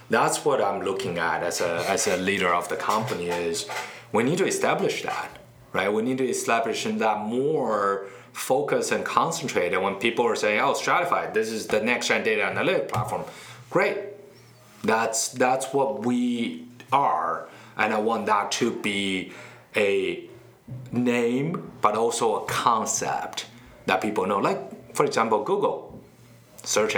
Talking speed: 155 wpm